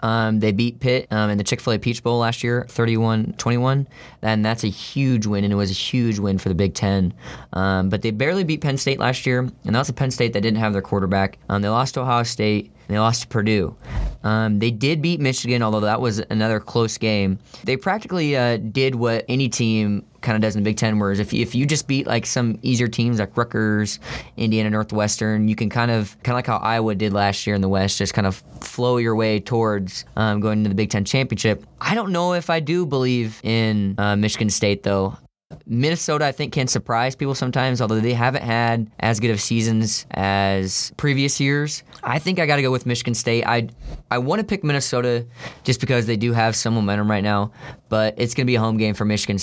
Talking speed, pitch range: 230 wpm, 105-125 Hz